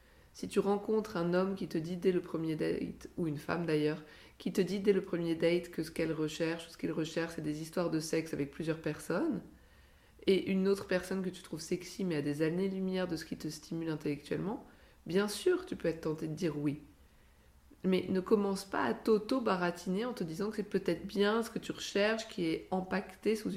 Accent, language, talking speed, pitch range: French, French, 220 wpm, 155-190 Hz